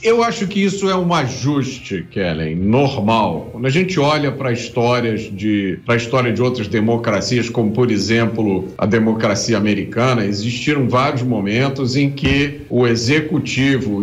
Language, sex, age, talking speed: Portuguese, male, 50-69, 135 wpm